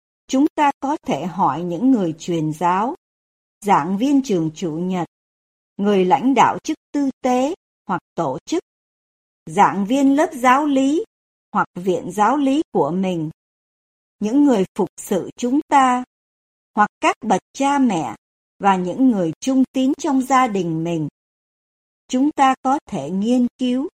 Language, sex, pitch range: Vietnamese, male, 185-275 Hz